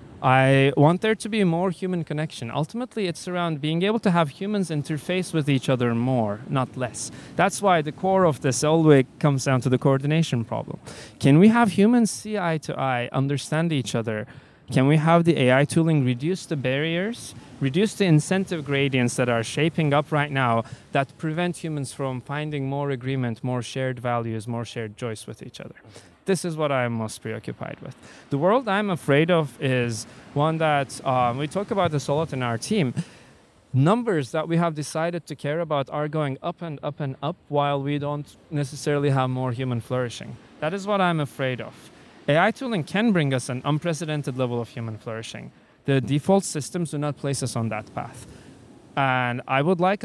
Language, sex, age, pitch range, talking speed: English, male, 30-49, 130-170 Hz, 195 wpm